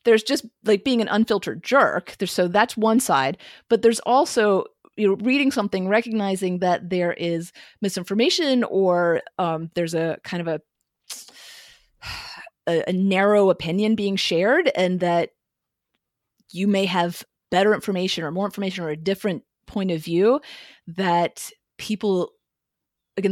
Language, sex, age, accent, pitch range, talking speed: English, female, 30-49, American, 170-210 Hz, 145 wpm